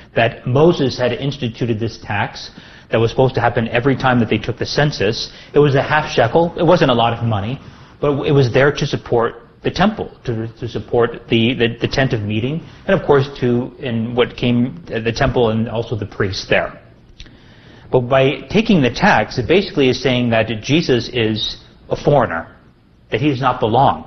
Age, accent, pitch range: 40-59, American, 115-150 Hz